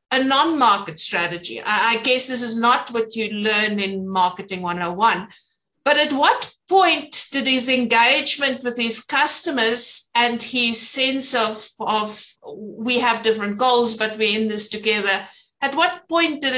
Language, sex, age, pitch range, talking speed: English, female, 60-79, 210-260 Hz, 150 wpm